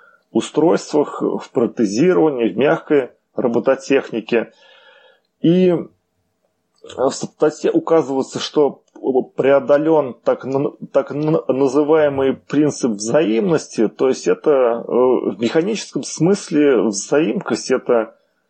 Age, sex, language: 30-49, male, Russian